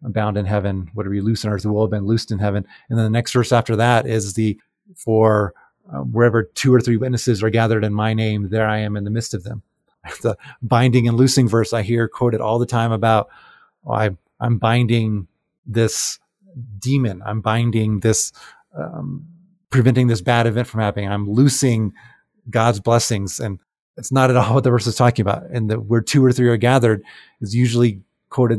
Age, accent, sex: 30-49, American, male